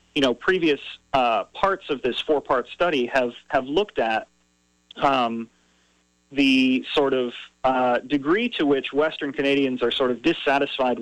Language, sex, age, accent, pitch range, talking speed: English, male, 40-59, American, 120-150 Hz, 145 wpm